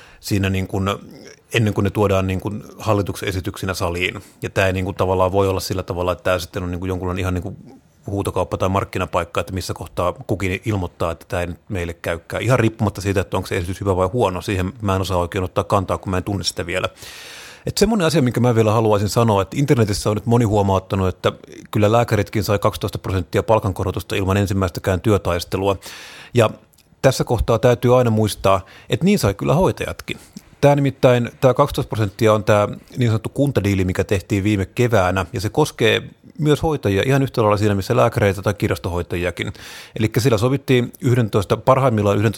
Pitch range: 95-115 Hz